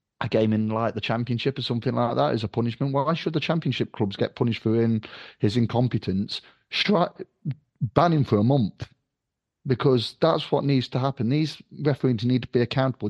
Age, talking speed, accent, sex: 30-49, 190 wpm, British, male